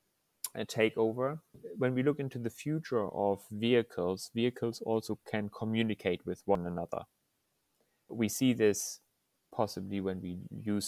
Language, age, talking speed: English, 30-49, 130 wpm